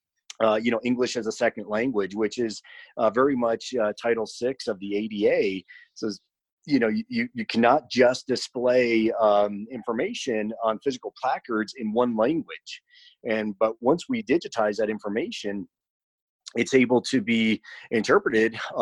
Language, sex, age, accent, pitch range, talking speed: English, male, 30-49, American, 110-130 Hz, 150 wpm